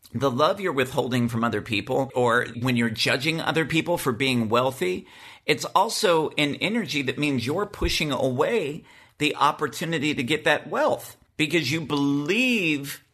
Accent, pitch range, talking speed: American, 120-160 Hz, 155 wpm